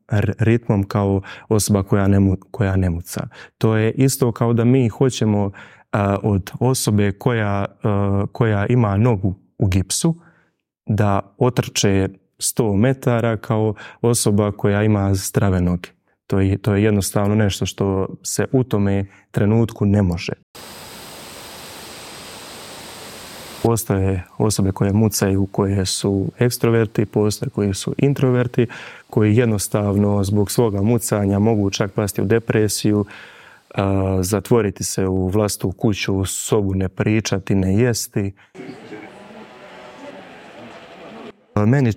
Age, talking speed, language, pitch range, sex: 20-39, 110 wpm, Croatian, 100-120 Hz, male